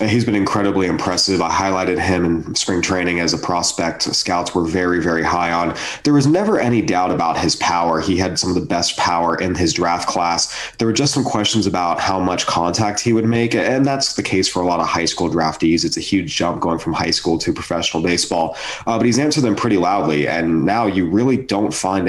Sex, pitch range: male, 85-105 Hz